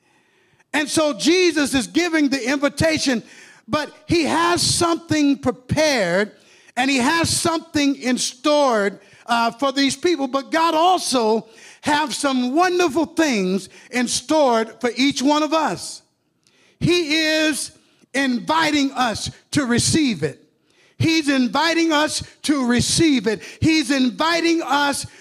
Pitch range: 220-300 Hz